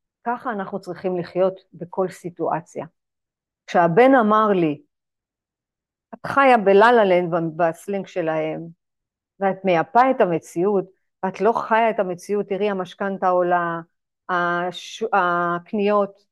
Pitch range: 185-235 Hz